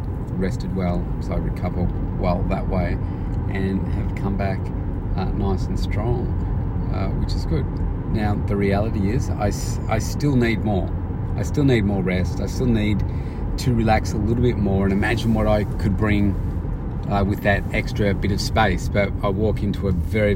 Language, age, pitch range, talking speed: English, 40-59, 95-105 Hz, 185 wpm